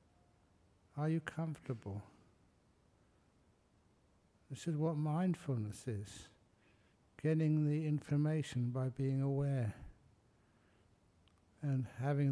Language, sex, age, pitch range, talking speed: English, male, 60-79, 100-140 Hz, 80 wpm